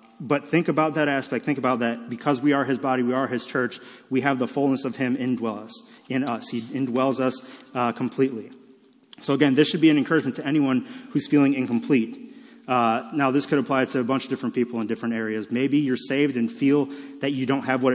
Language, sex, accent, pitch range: English, male, American, 120-135 Hz